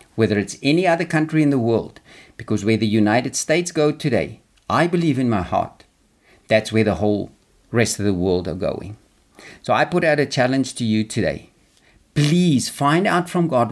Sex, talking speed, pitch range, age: male, 190 wpm, 110-155 Hz, 50-69